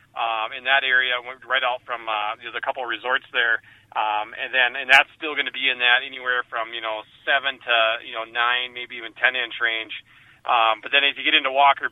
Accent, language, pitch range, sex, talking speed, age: American, English, 115-140 Hz, male, 235 wpm, 30-49